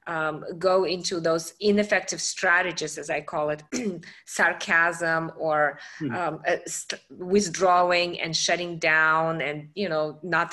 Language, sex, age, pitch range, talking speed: English, female, 30-49, 170-230 Hz, 120 wpm